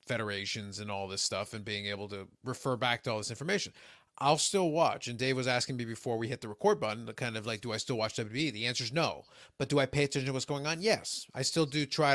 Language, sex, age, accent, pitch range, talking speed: English, male, 30-49, American, 115-145 Hz, 275 wpm